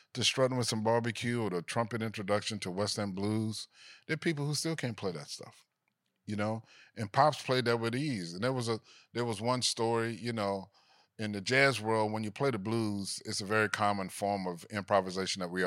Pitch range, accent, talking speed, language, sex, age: 100-120 Hz, American, 220 wpm, English, male, 30-49